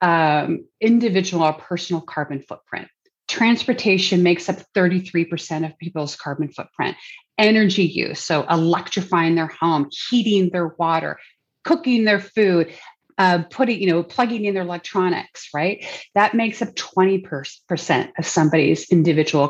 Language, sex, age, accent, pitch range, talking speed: English, female, 30-49, American, 165-200 Hz, 130 wpm